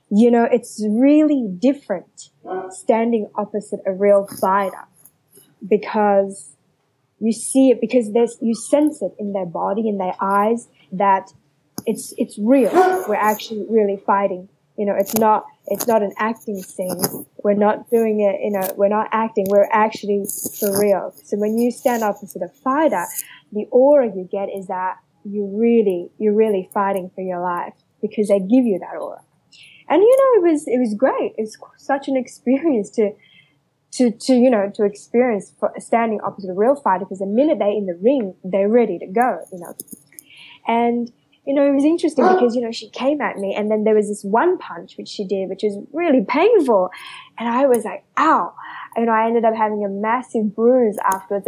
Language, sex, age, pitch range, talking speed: English, female, 10-29, 200-245 Hz, 190 wpm